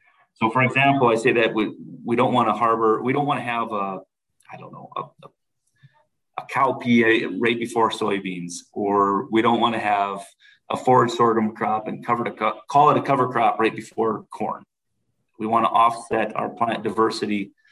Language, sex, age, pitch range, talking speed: English, male, 30-49, 105-120 Hz, 190 wpm